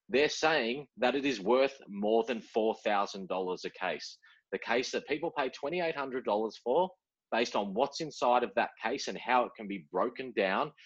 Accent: Australian